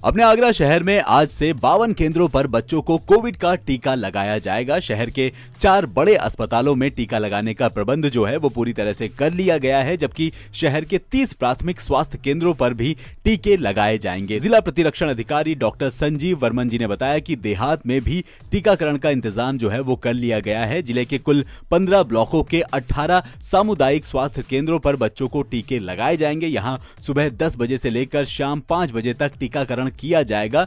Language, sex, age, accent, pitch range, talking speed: Hindi, male, 30-49, native, 115-155 Hz, 195 wpm